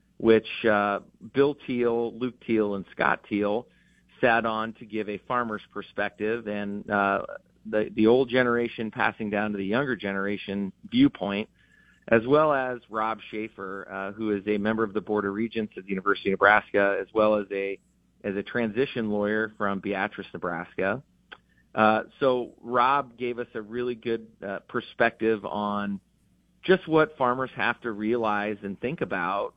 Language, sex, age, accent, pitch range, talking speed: English, male, 40-59, American, 105-120 Hz, 160 wpm